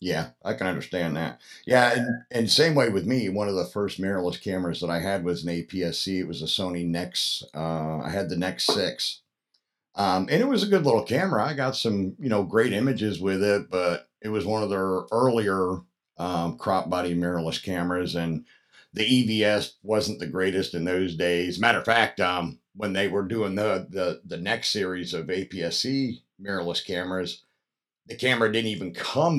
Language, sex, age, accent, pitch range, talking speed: English, male, 50-69, American, 85-100 Hz, 195 wpm